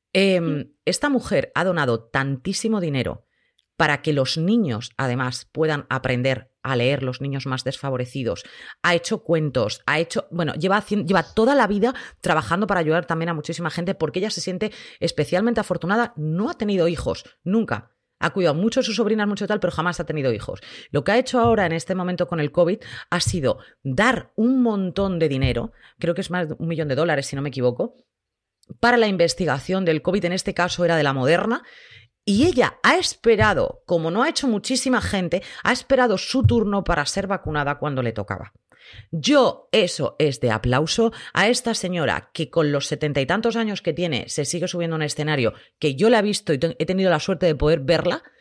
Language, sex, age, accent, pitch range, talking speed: Spanish, female, 30-49, Spanish, 145-205 Hz, 200 wpm